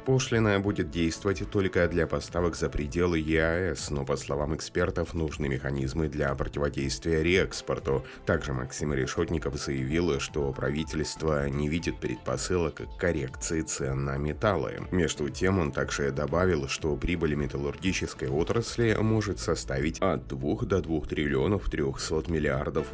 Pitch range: 70-90 Hz